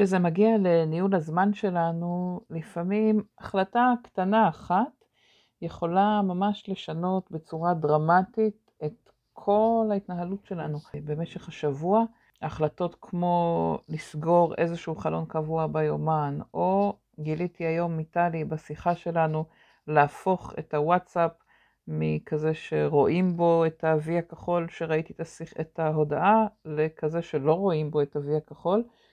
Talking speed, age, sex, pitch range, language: 105 wpm, 50-69, female, 155-190 Hz, Hebrew